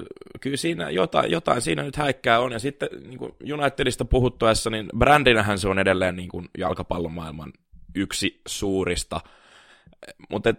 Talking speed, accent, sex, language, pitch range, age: 125 wpm, native, male, Finnish, 95-120 Hz, 20-39